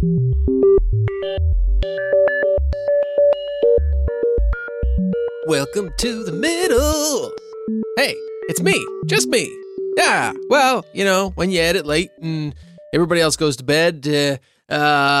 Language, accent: English, American